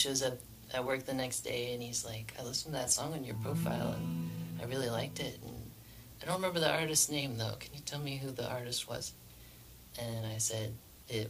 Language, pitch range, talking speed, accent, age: English, 110-125 Hz, 230 wpm, American, 30-49